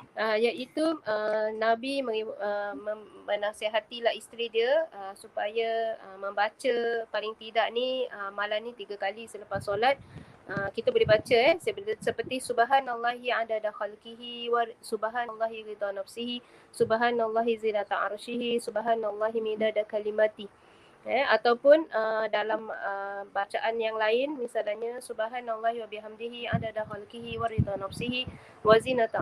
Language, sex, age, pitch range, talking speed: Malay, female, 20-39, 210-240 Hz, 120 wpm